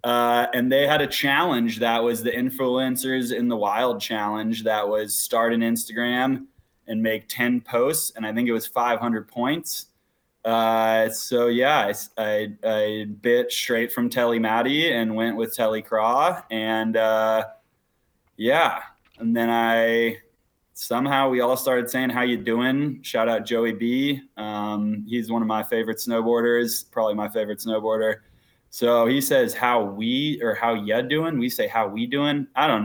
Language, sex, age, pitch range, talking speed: English, male, 20-39, 115-130 Hz, 165 wpm